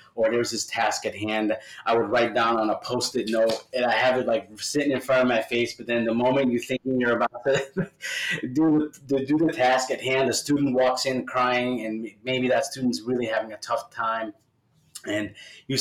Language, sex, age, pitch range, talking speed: English, male, 30-49, 110-130 Hz, 215 wpm